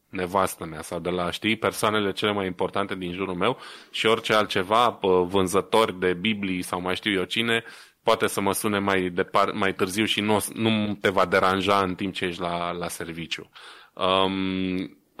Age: 20-39